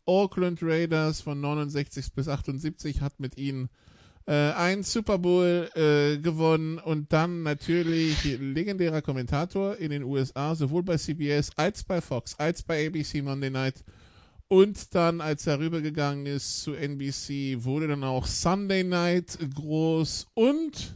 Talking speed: 140 wpm